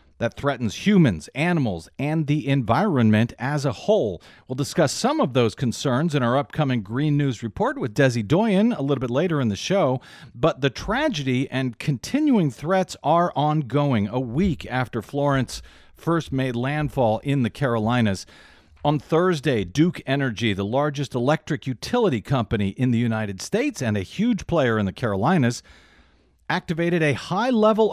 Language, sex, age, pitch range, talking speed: English, male, 50-69, 120-165 Hz, 155 wpm